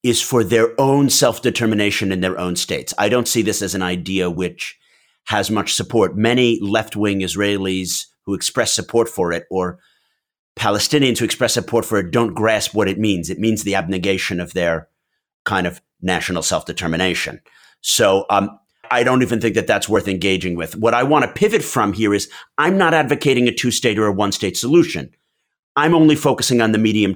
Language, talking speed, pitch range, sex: English, 185 wpm, 100-125 Hz, male